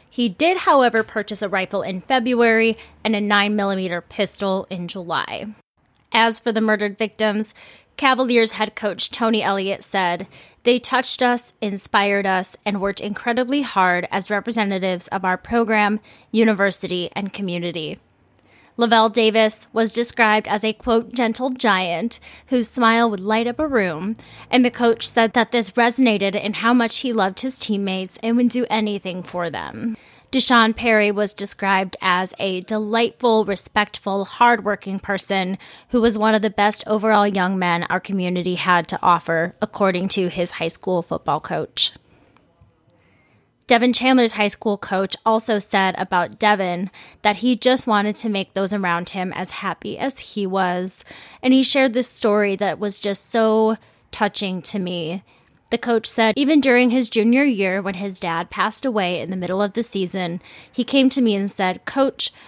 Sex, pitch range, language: female, 185-230 Hz, English